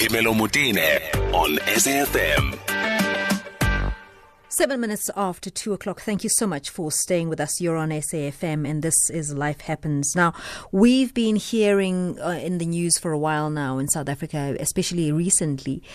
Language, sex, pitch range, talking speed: English, female, 150-215 Hz, 145 wpm